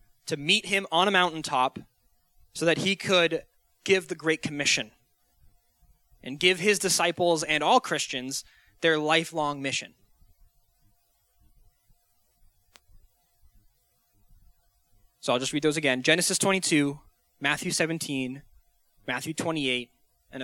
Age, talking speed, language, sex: 20-39, 110 wpm, English, male